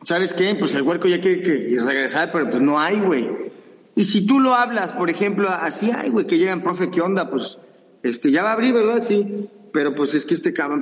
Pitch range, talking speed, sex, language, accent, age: 160-215 Hz, 240 wpm, male, Spanish, Mexican, 40-59